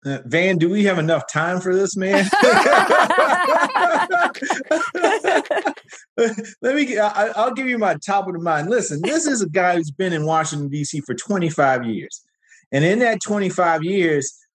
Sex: male